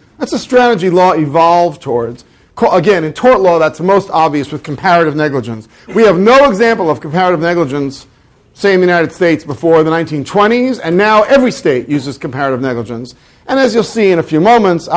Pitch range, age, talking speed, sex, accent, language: 140-220 Hz, 50-69, 185 wpm, male, American, English